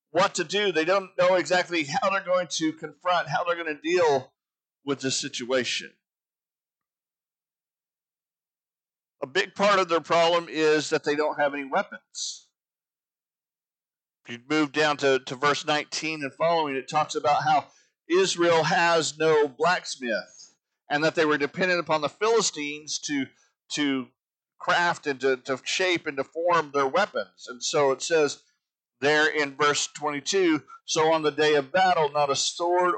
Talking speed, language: 160 wpm, English